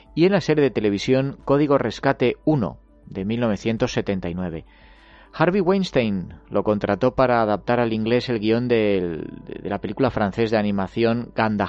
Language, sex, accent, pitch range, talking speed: Spanish, male, Spanish, 105-135 Hz, 145 wpm